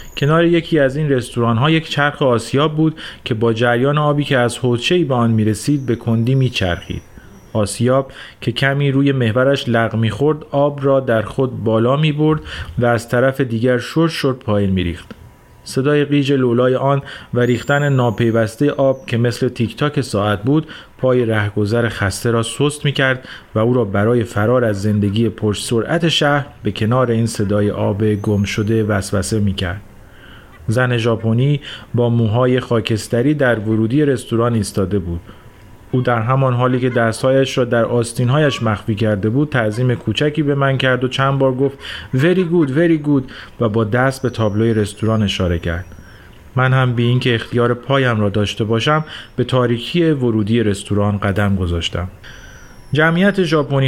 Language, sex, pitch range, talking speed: Persian, male, 110-135 Hz, 165 wpm